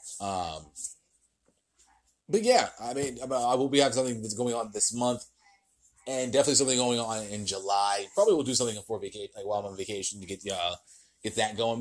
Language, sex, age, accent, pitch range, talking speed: English, male, 30-49, American, 115-175 Hz, 205 wpm